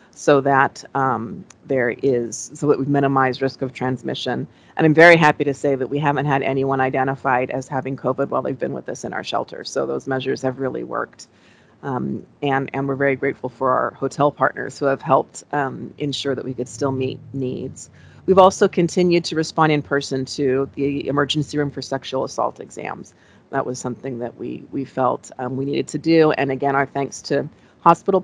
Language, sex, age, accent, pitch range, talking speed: English, female, 40-59, American, 135-145 Hz, 200 wpm